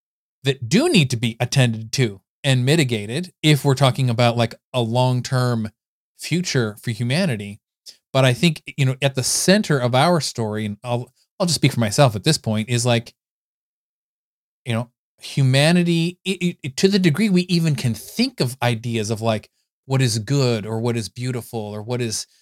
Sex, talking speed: male, 185 wpm